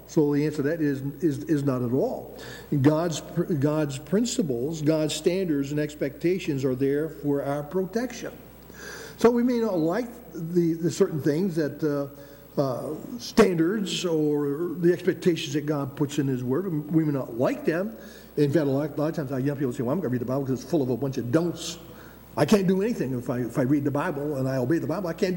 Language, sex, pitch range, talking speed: English, male, 145-195 Hz, 225 wpm